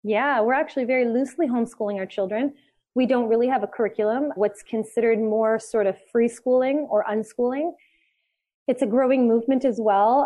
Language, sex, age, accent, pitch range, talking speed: English, female, 20-39, American, 200-235 Hz, 170 wpm